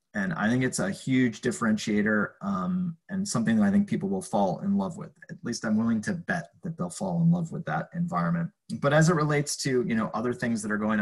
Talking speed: 245 wpm